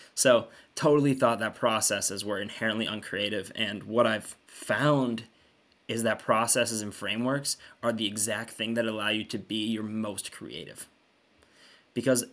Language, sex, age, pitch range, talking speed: English, male, 20-39, 110-130 Hz, 145 wpm